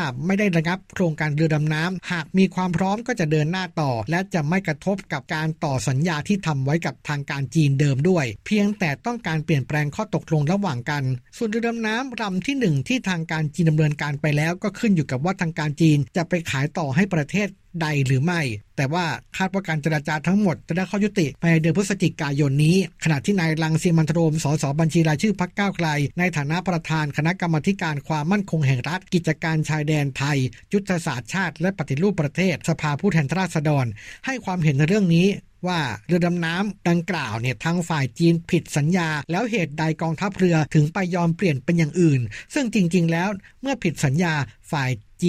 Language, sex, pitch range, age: Thai, male, 150-185 Hz, 60-79